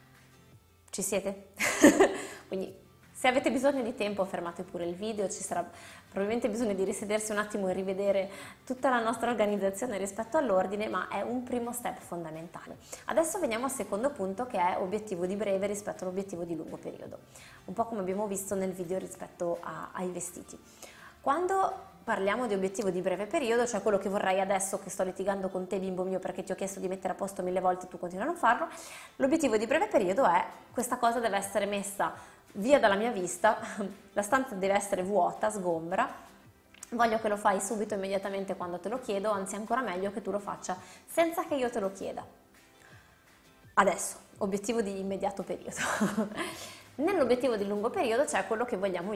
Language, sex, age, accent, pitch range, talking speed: Italian, female, 20-39, native, 185-230 Hz, 185 wpm